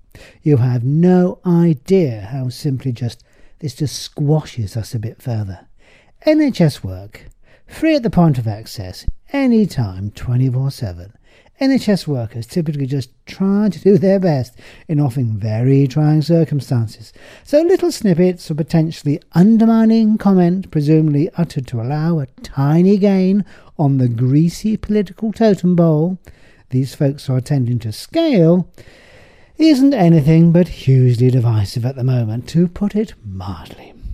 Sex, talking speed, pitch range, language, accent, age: male, 135 wpm, 120-180 Hz, English, British, 50-69